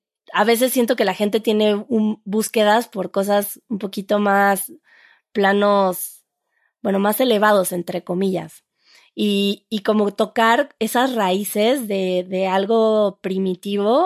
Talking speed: 125 wpm